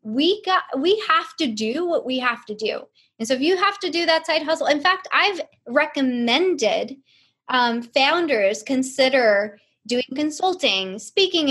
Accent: American